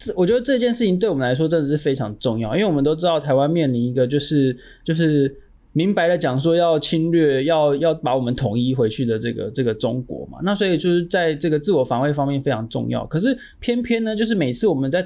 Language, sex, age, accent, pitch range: Chinese, male, 20-39, native, 140-195 Hz